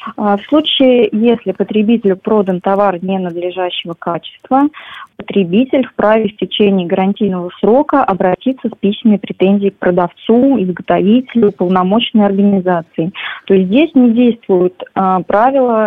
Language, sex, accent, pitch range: Russian, female, native, 190-230 Hz